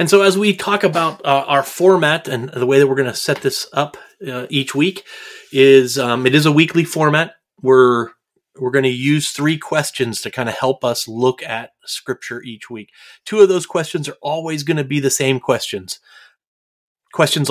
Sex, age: male, 30-49